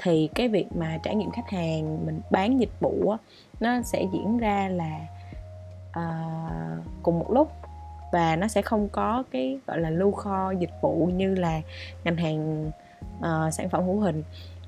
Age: 20-39